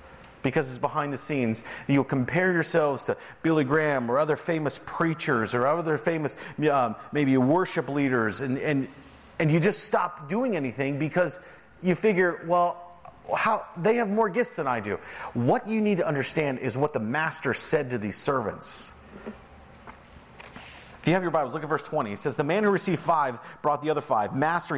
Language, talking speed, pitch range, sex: English, 185 wpm, 115-160 Hz, male